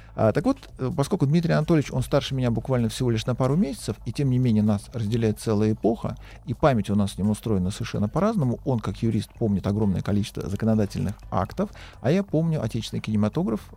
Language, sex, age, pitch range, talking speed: Russian, male, 50-69, 105-140 Hz, 190 wpm